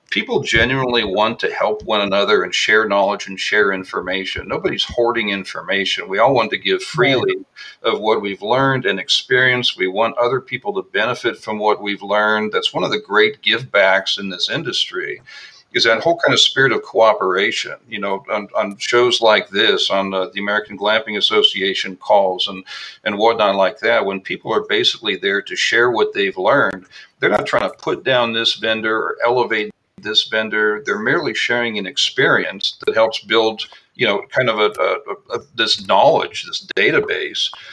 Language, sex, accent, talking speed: English, male, American, 185 wpm